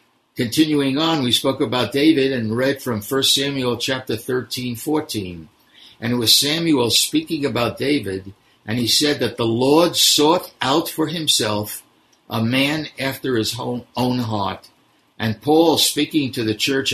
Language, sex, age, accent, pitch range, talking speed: English, male, 60-79, American, 110-145 Hz, 150 wpm